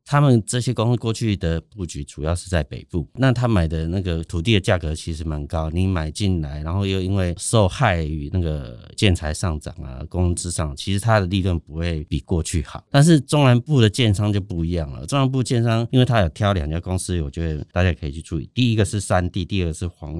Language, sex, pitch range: Chinese, male, 80-110 Hz